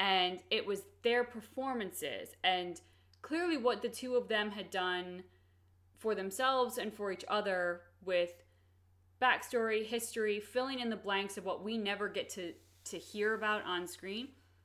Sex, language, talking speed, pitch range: female, English, 155 wpm, 170-225 Hz